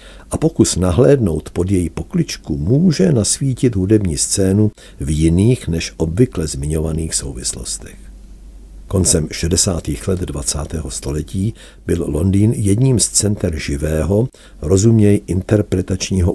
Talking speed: 105 wpm